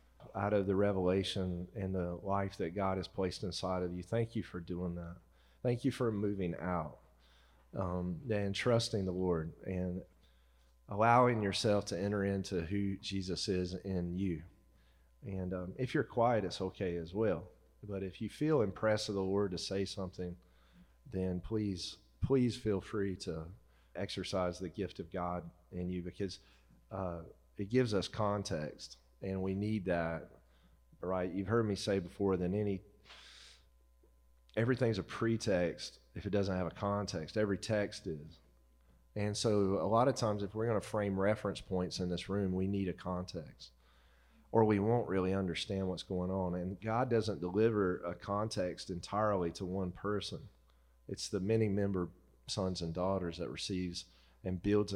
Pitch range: 85-100 Hz